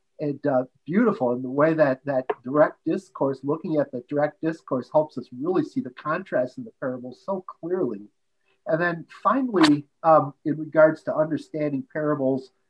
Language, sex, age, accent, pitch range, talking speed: English, male, 40-59, American, 140-200 Hz, 165 wpm